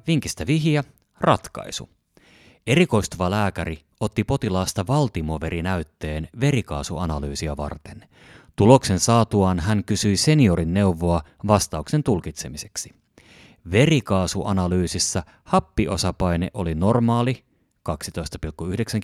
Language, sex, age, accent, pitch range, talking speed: Finnish, male, 30-49, native, 85-115 Hz, 75 wpm